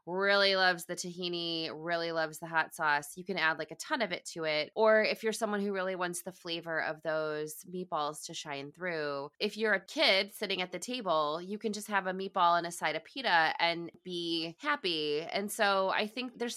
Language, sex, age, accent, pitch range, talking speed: English, female, 20-39, American, 155-195 Hz, 220 wpm